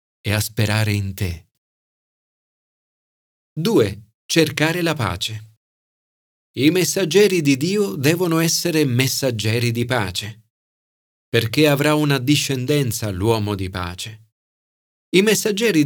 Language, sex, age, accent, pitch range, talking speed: Italian, male, 40-59, native, 110-150 Hz, 100 wpm